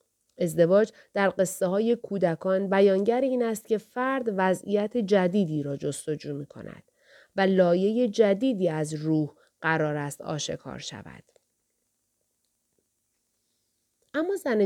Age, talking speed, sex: 30-49, 110 wpm, female